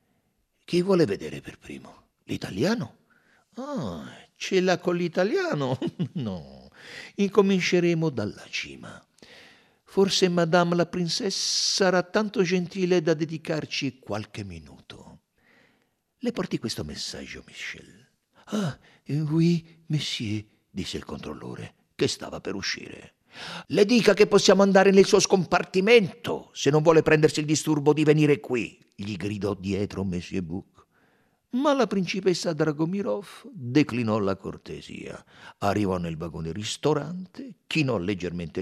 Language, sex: Italian, male